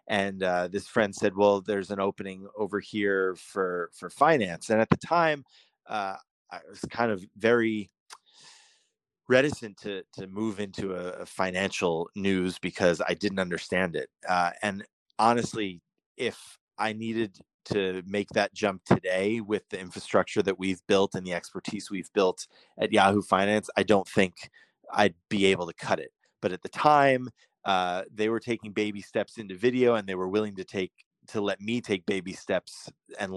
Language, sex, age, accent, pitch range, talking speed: English, male, 30-49, American, 95-110 Hz, 175 wpm